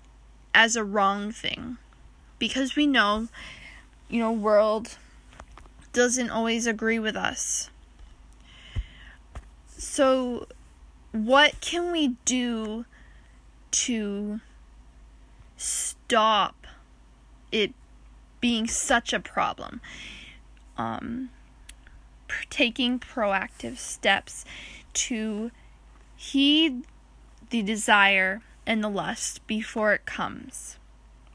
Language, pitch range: English, 200-250 Hz